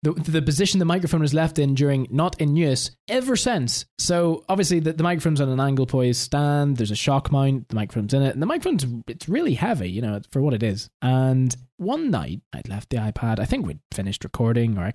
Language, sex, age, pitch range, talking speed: English, male, 20-39, 115-155 Hz, 230 wpm